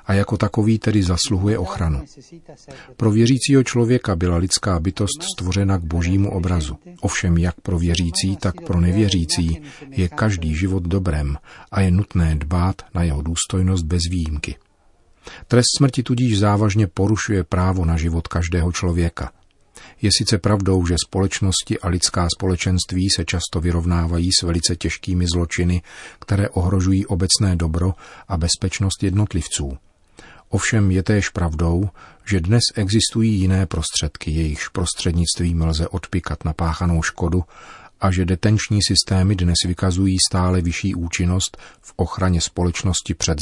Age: 40-59